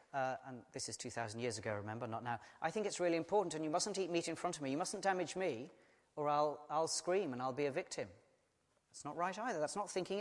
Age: 40-59